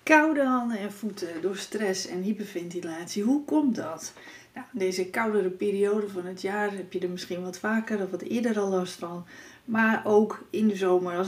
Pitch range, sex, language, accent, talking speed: 185-255 Hz, female, Dutch, Dutch, 190 wpm